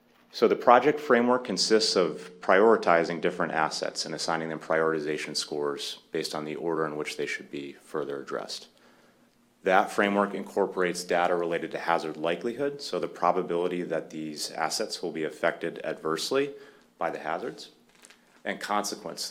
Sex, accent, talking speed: male, American, 150 wpm